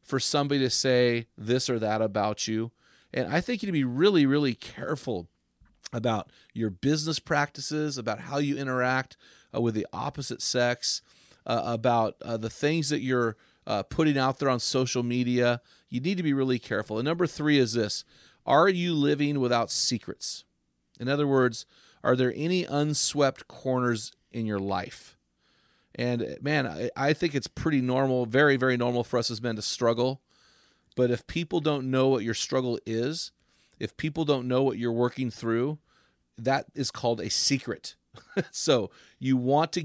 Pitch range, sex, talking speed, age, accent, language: 115-145 Hz, male, 175 wpm, 30-49, American, English